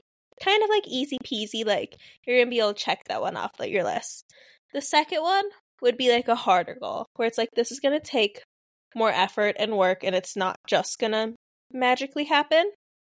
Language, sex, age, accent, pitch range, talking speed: English, female, 10-29, American, 195-245 Hz, 215 wpm